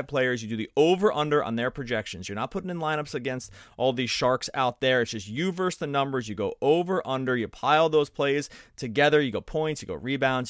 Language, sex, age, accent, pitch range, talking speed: English, male, 30-49, American, 115-150 Hz, 235 wpm